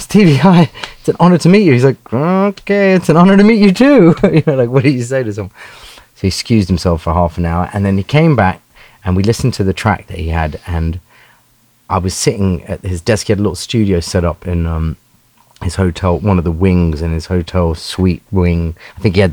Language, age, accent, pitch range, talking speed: English, 30-49, British, 90-120 Hz, 250 wpm